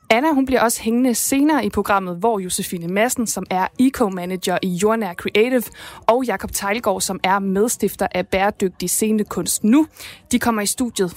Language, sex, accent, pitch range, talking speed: Danish, female, native, 190-230 Hz, 170 wpm